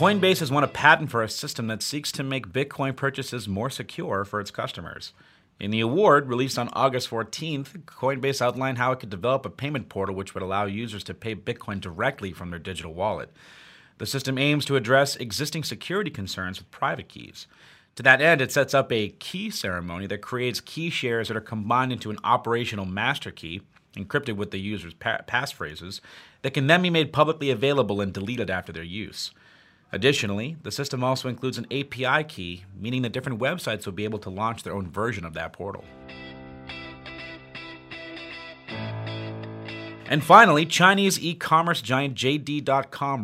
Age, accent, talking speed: 30-49, American, 175 wpm